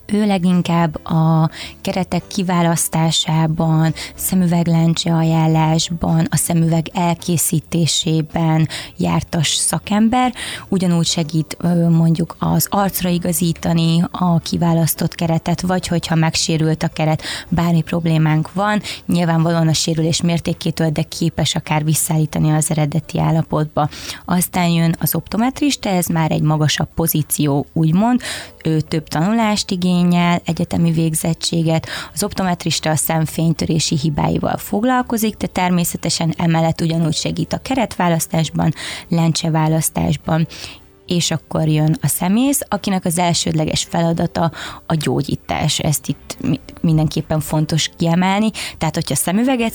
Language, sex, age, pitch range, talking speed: Hungarian, female, 20-39, 160-180 Hz, 105 wpm